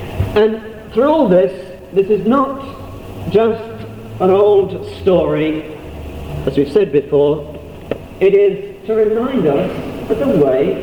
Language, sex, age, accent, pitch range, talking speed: English, male, 50-69, British, 170-225 Hz, 125 wpm